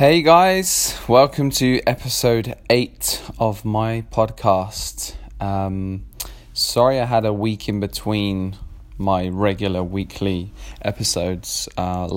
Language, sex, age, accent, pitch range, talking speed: English, male, 20-39, British, 95-115 Hz, 110 wpm